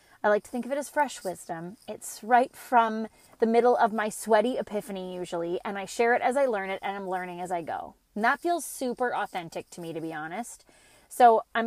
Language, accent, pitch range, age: English, American, 185-235 Hz, 20-39